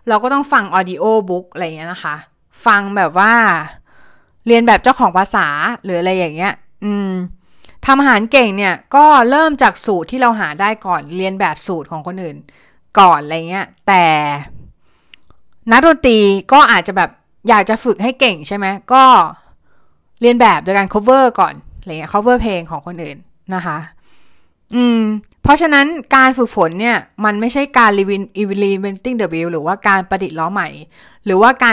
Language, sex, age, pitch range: Thai, female, 20-39, 175-235 Hz